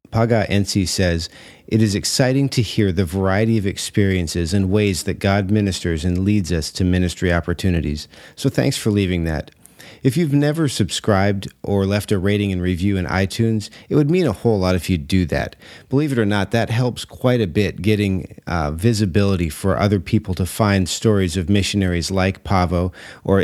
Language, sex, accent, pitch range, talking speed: English, male, American, 90-110 Hz, 185 wpm